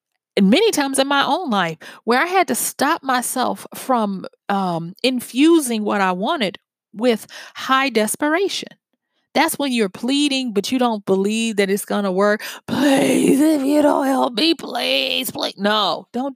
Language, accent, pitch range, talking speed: English, American, 195-280 Hz, 160 wpm